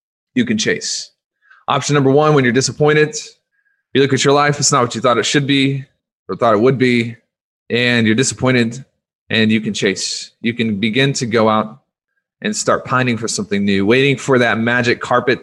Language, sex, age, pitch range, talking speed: English, male, 20-39, 110-145 Hz, 200 wpm